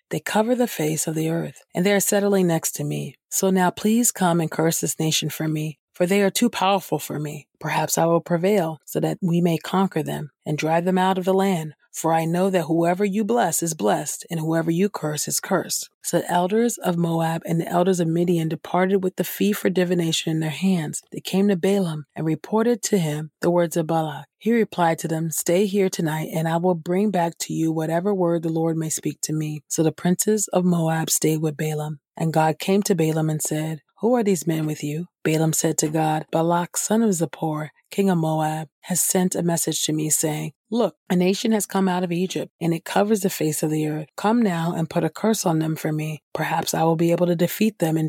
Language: English